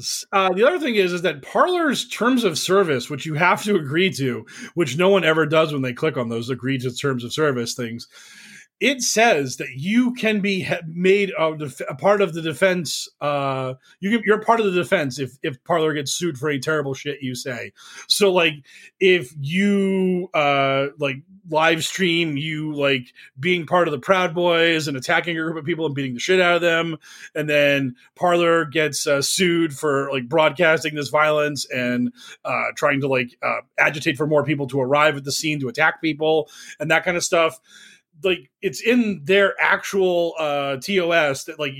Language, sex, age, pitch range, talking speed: English, male, 30-49, 145-190 Hz, 200 wpm